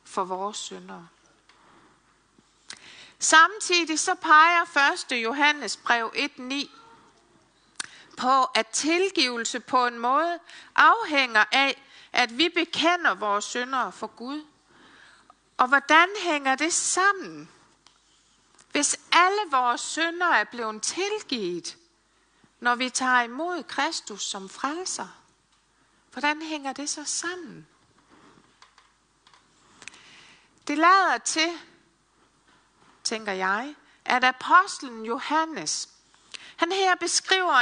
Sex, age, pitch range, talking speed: female, 60-79, 235-330 Hz, 95 wpm